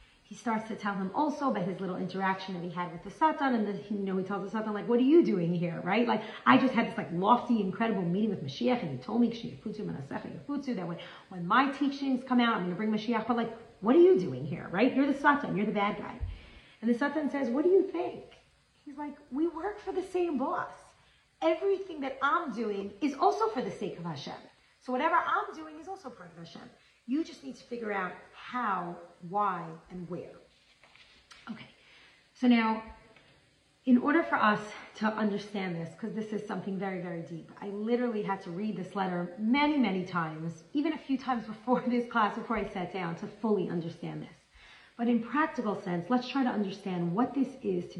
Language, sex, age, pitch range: English, female, 40-59, 190-260 Hz